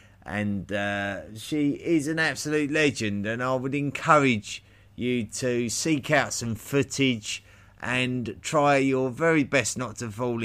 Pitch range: 100-130 Hz